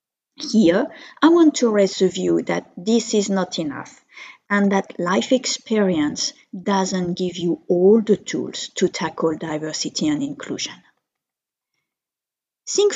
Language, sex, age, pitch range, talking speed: English, female, 50-69, 180-255 Hz, 130 wpm